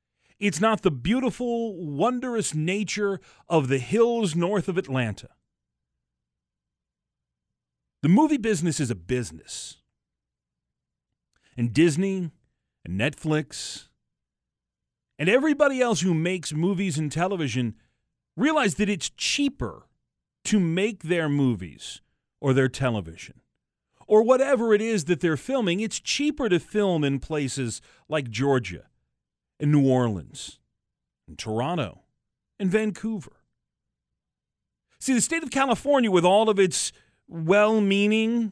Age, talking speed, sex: 40-59, 115 wpm, male